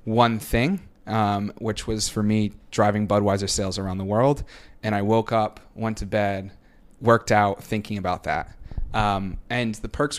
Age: 30-49